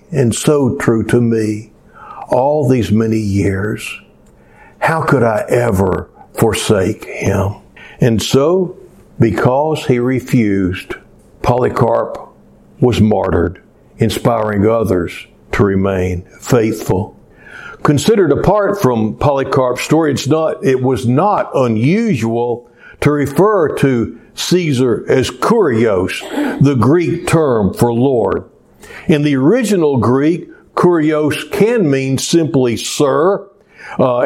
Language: English